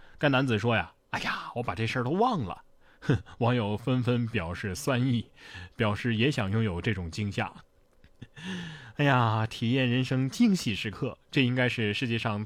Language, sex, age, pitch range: Chinese, male, 20-39, 115-165 Hz